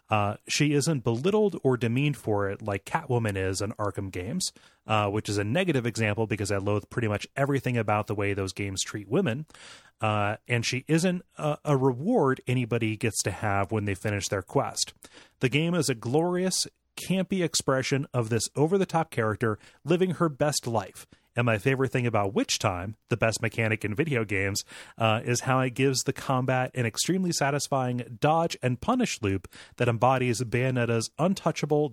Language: English